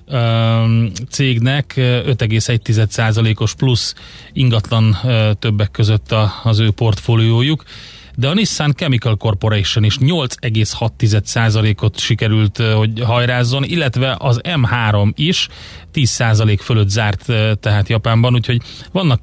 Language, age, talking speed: Hungarian, 30-49, 95 wpm